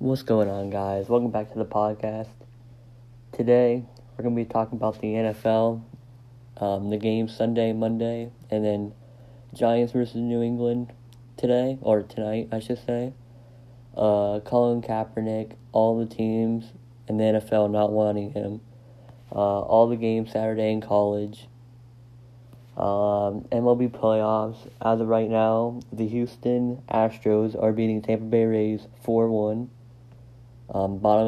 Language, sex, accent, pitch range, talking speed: English, male, American, 110-120 Hz, 140 wpm